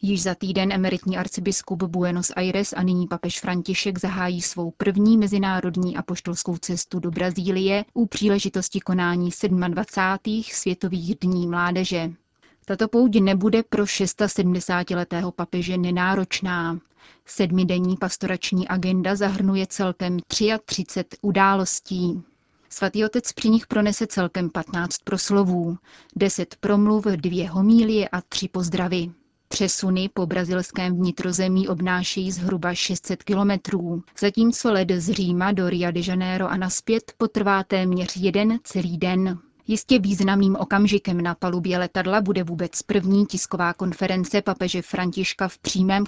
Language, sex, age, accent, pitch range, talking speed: Czech, female, 30-49, native, 180-200 Hz, 120 wpm